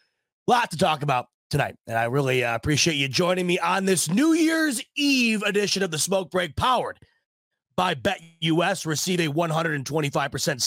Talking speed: 165 wpm